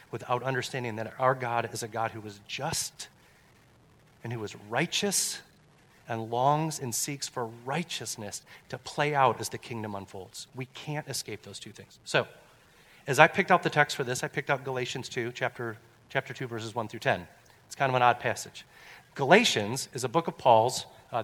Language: English